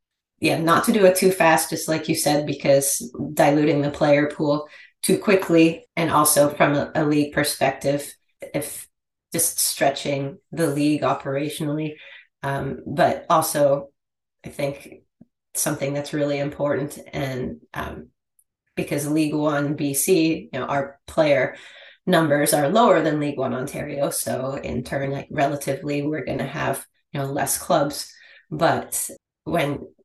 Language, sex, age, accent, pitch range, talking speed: English, female, 30-49, American, 140-155 Hz, 140 wpm